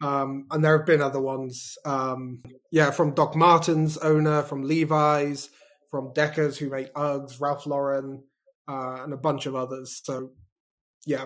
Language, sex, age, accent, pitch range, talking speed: English, male, 20-39, British, 135-155 Hz, 160 wpm